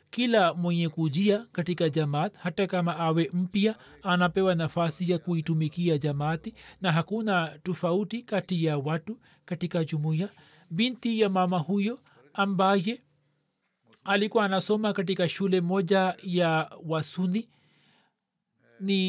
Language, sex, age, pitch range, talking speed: Swahili, male, 40-59, 175-210 Hz, 110 wpm